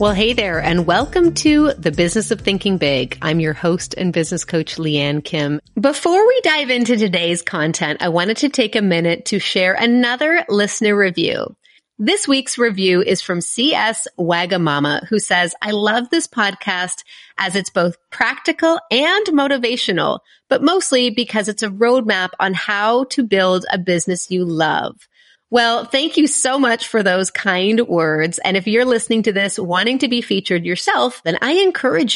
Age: 30-49